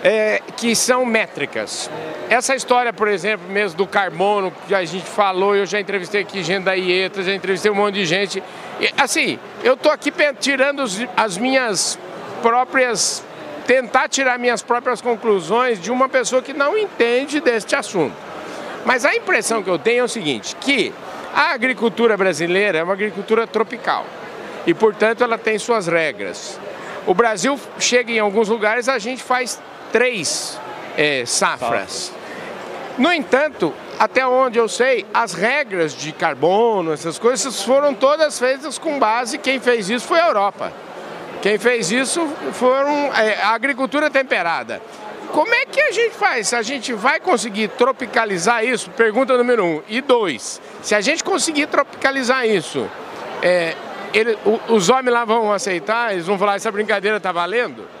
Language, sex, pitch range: Portuguese, male, 205-260 Hz